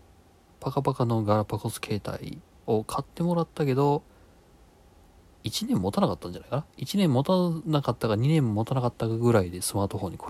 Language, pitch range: Japanese, 90-120 Hz